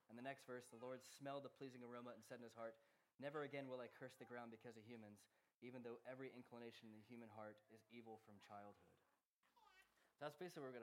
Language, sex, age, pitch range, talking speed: English, male, 20-39, 115-150 Hz, 235 wpm